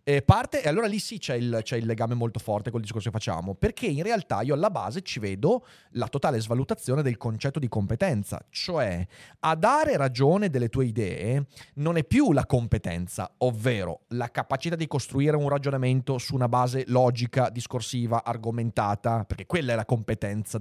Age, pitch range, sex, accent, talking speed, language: 30-49, 115-150 Hz, male, native, 185 wpm, Italian